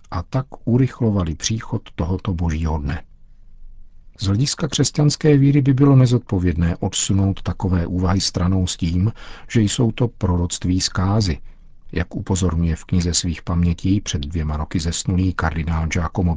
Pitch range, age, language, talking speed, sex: 85-110 Hz, 50-69, Czech, 135 wpm, male